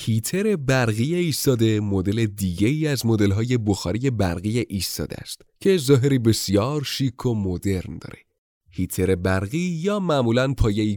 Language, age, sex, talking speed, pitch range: Persian, 30-49, male, 130 wpm, 100-145 Hz